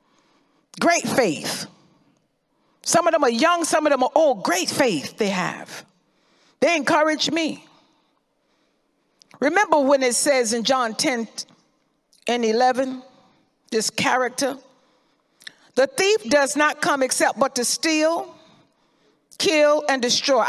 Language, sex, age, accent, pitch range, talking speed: English, female, 50-69, American, 255-315 Hz, 125 wpm